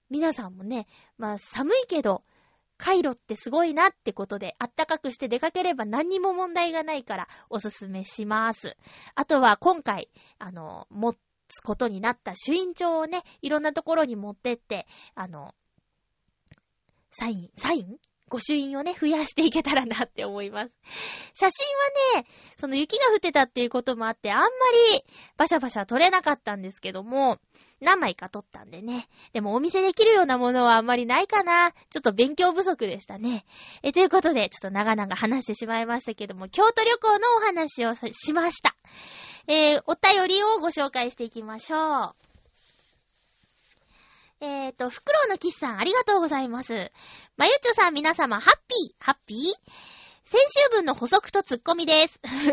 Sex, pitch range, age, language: female, 235-360 Hz, 20-39, Japanese